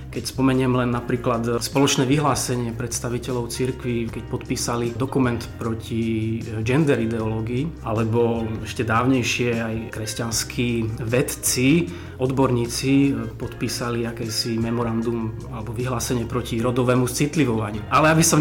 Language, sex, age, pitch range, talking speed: Slovak, male, 30-49, 115-140 Hz, 105 wpm